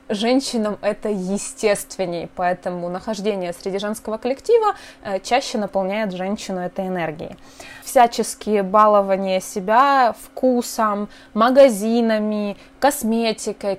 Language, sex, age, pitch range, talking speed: Russian, female, 20-39, 190-245 Hz, 85 wpm